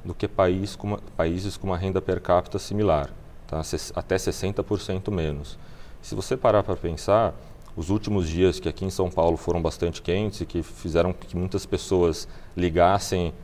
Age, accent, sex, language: 30-49, Brazilian, male, English